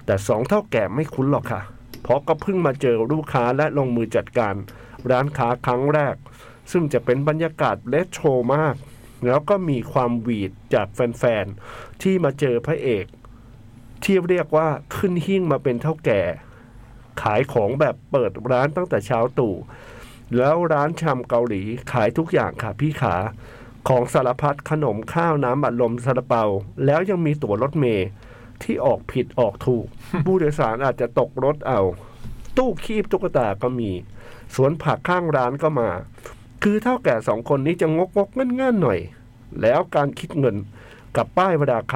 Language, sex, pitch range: Thai, male, 120-160 Hz